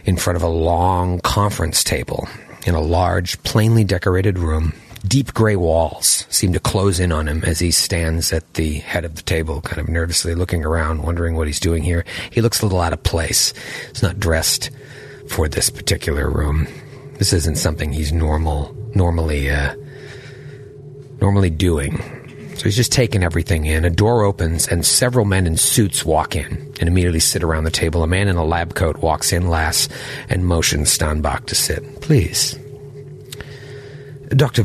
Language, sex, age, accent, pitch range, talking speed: English, male, 40-59, American, 80-135 Hz, 175 wpm